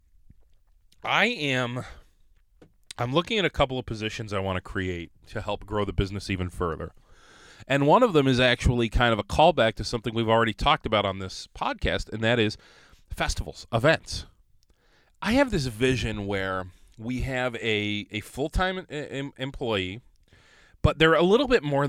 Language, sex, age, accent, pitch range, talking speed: English, male, 30-49, American, 95-130 Hz, 165 wpm